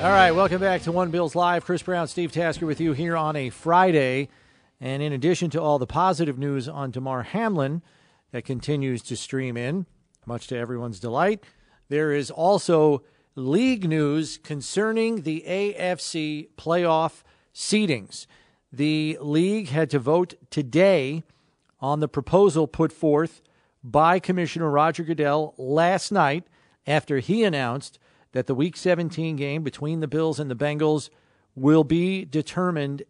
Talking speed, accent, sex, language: 150 wpm, American, male, English